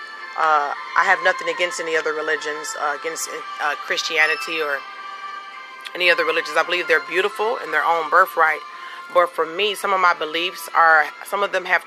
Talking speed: 180 wpm